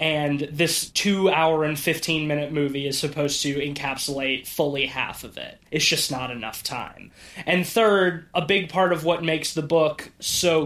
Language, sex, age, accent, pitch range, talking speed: English, male, 20-39, American, 145-170 Hz, 170 wpm